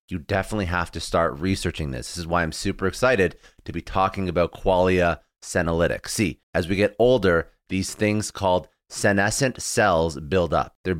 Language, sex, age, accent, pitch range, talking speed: English, male, 30-49, American, 90-105 Hz, 175 wpm